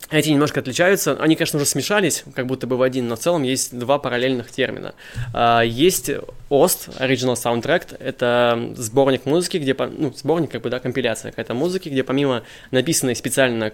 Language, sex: Russian, male